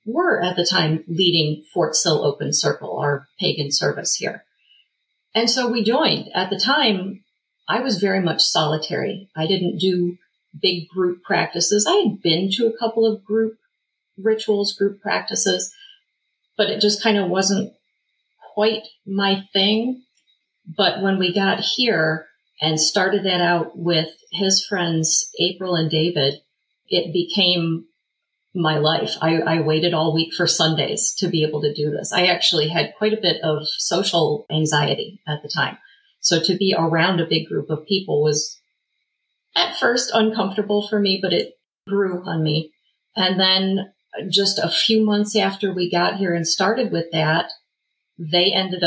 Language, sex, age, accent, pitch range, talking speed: English, female, 40-59, American, 160-215 Hz, 160 wpm